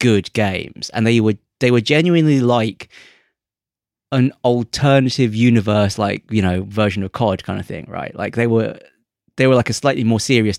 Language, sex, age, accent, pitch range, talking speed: English, male, 30-49, British, 100-130 Hz, 180 wpm